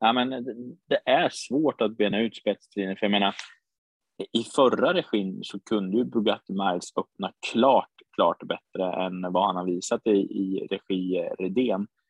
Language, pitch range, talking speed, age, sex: Swedish, 95-105 Hz, 160 wpm, 20-39, male